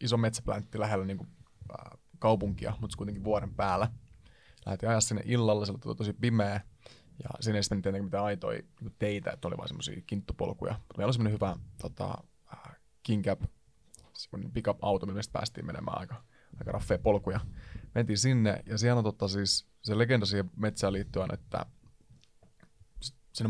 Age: 20-39